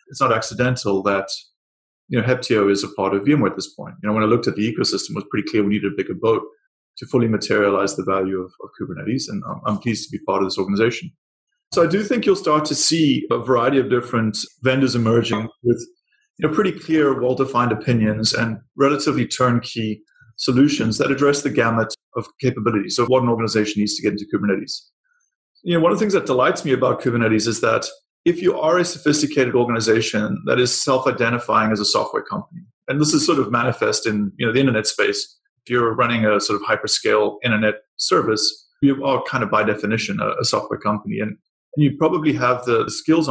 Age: 30-49